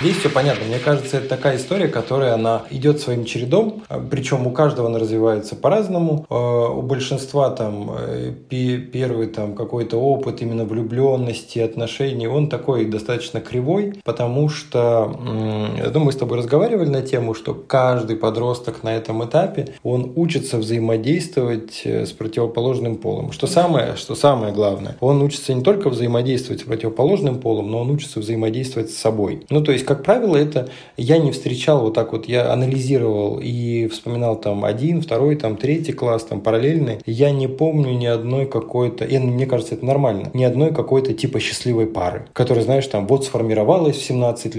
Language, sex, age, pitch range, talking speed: Russian, male, 20-39, 115-140 Hz, 160 wpm